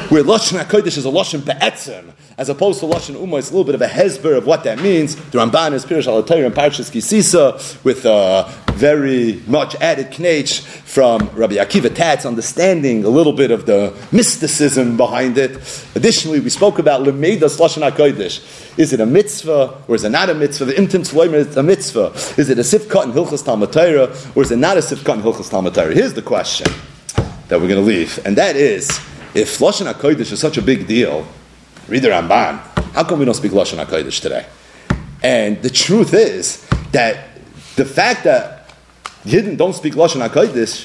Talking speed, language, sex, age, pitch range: 185 wpm, English, male, 40-59, 130-170 Hz